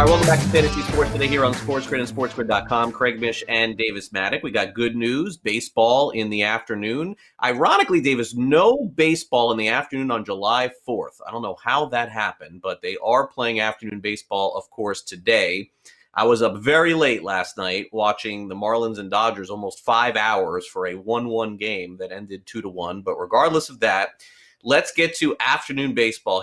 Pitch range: 105-125 Hz